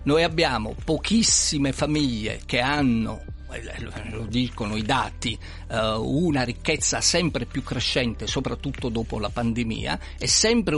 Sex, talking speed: male, 115 wpm